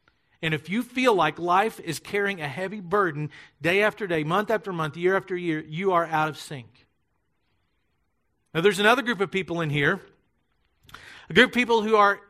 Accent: American